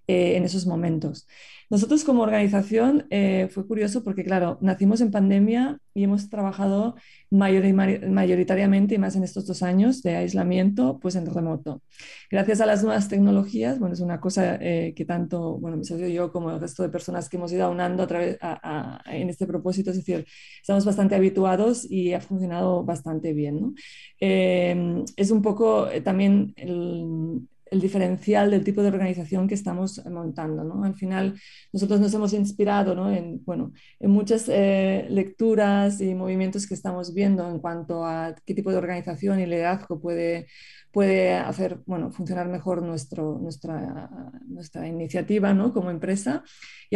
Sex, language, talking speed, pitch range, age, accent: female, Spanish, 165 wpm, 175-200 Hz, 20-39, Spanish